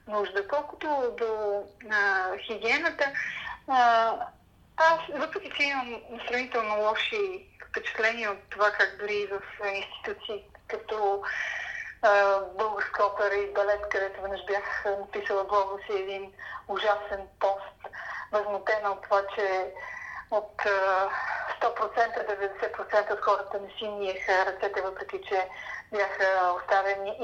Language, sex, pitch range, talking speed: Bulgarian, female, 200-235 Hz, 115 wpm